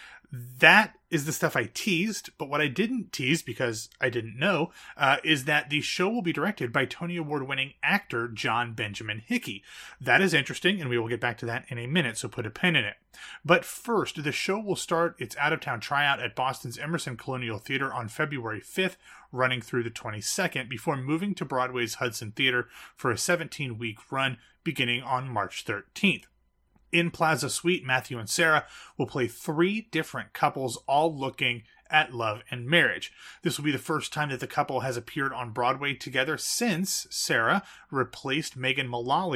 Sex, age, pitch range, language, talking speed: male, 30-49, 120-160 Hz, English, 185 wpm